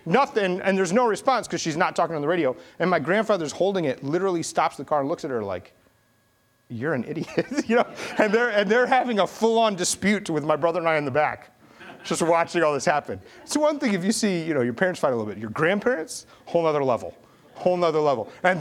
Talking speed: 250 wpm